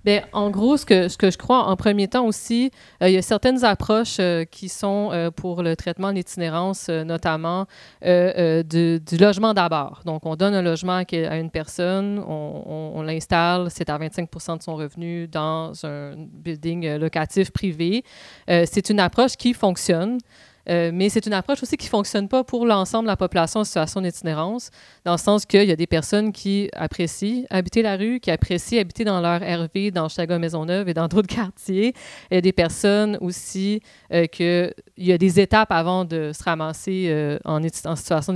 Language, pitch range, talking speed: French, 165-200 Hz, 200 wpm